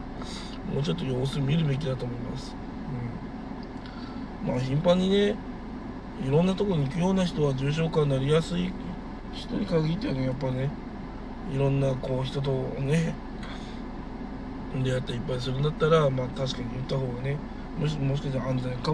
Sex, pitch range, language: male, 130-185 Hz, Japanese